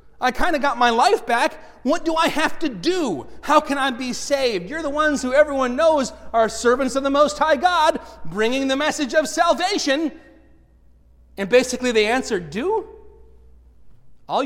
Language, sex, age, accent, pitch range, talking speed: English, male, 30-49, American, 225-315 Hz, 175 wpm